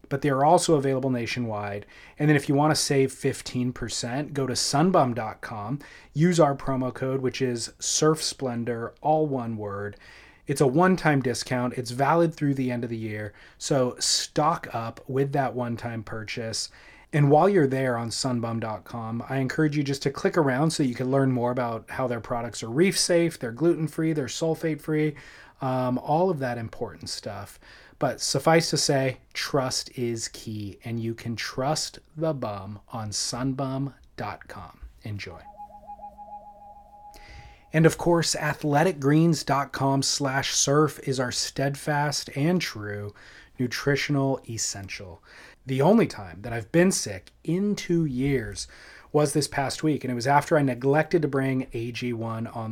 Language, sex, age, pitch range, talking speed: English, male, 30-49, 120-155 Hz, 150 wpm